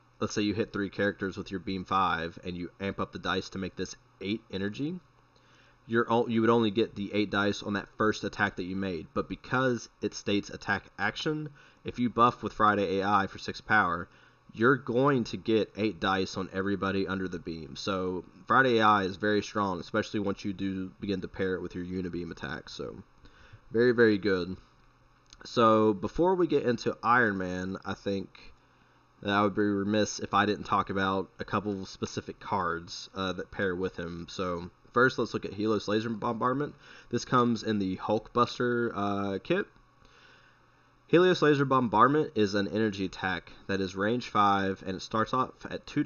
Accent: American